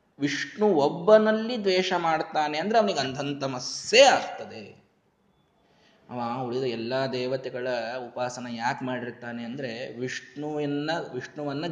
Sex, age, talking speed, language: male, 20-39, 85 wpm, Kannada